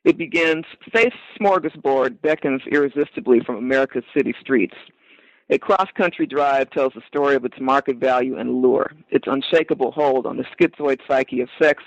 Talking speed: 155 wpm